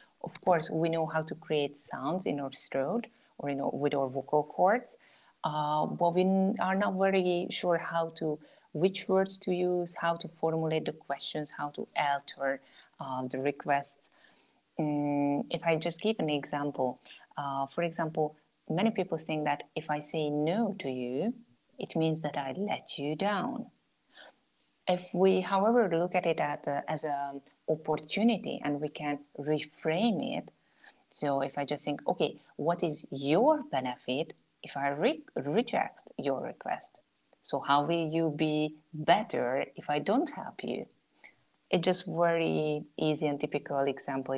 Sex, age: female, 30-49